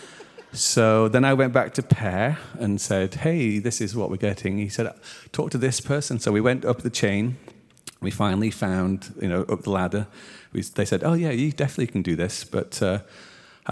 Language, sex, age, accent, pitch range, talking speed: English, male, 40-59, British, 100-130 Hz, 200 wpm